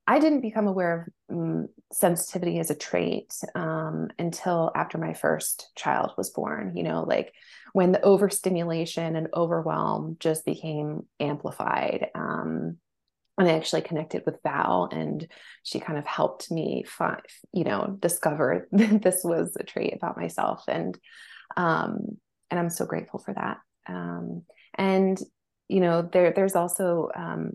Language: English